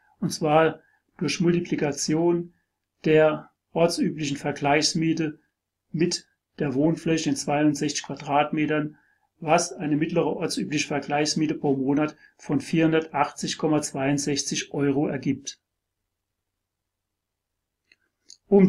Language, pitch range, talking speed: German, 140-175 Hz, 80 wpm